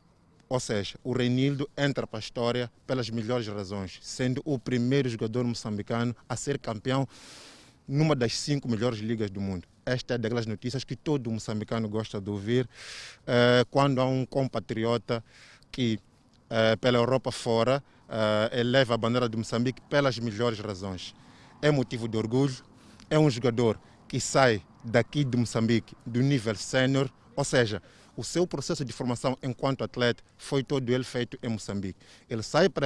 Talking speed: 155 wpm